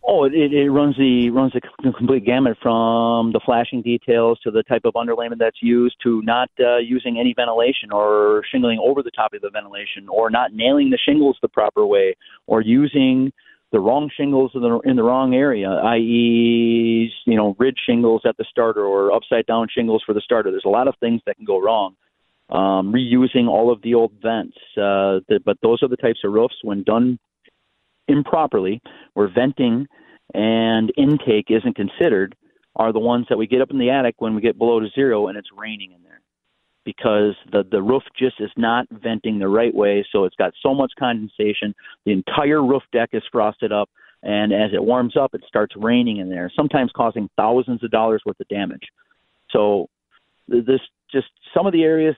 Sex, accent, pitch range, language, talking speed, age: male, American, 110-130 Hz, English, 195 wpm, 40-59